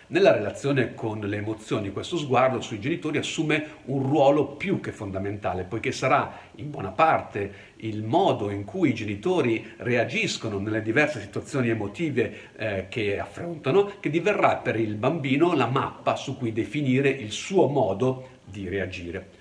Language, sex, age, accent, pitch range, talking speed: Italian, male, 50-69, native, 110-145 Hz, 150 wpm